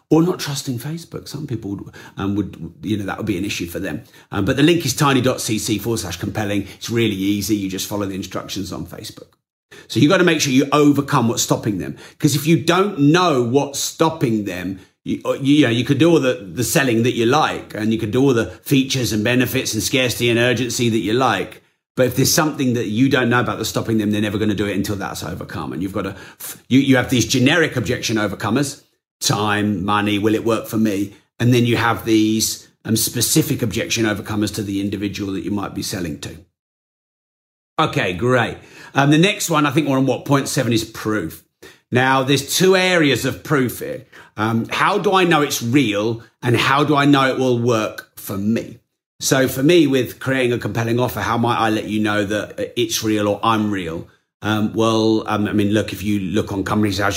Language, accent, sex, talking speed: English, British, male, 220 wpm